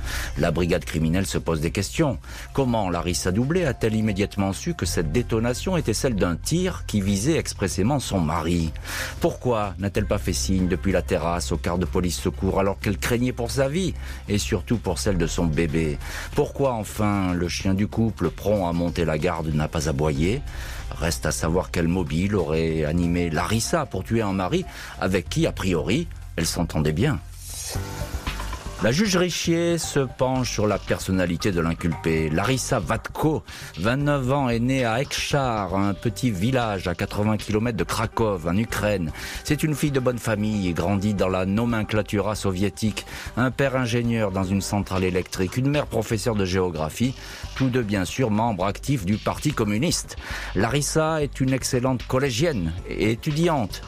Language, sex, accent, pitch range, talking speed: French, male, French, 85-125 Hz, 170 wpm